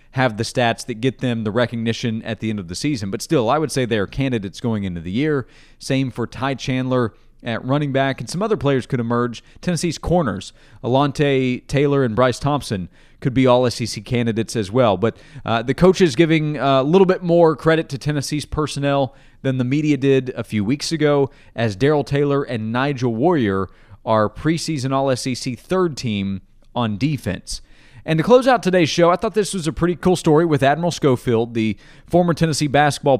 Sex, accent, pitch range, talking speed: male, American, 120-155 Hz, 200 wpm